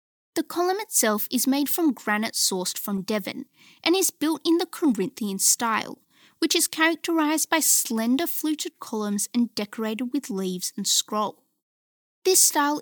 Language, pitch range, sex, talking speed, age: English, 220-320 Hz, female, 150 wpm, 20-39